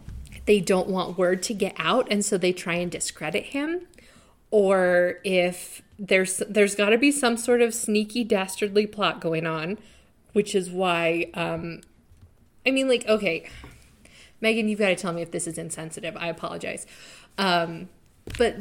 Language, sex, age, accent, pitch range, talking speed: English, female, 20-39, American, 175-230 Hz, 165 wpm